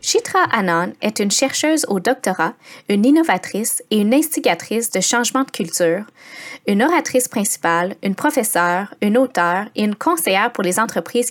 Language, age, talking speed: English, 20-39, 155 wpm